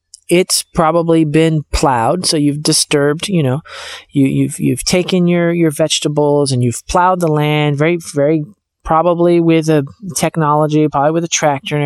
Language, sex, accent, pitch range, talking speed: English, male, American, 140-180 Hz, 160 wpm